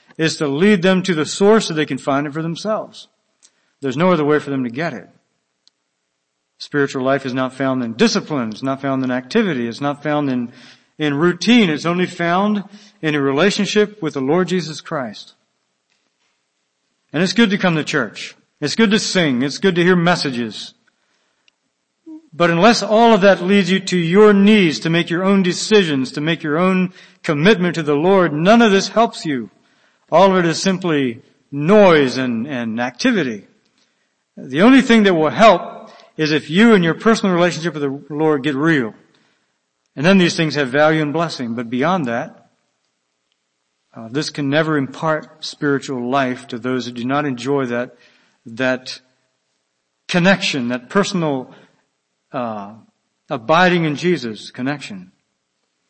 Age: 60-79